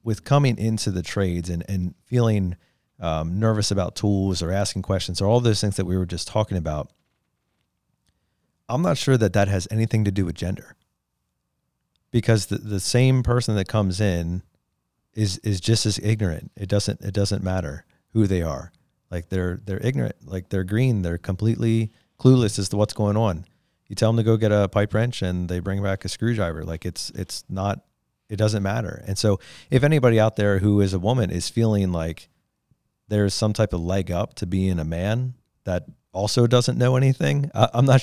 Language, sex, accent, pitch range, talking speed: English, male, American, 85-110 Hz, 195 wpm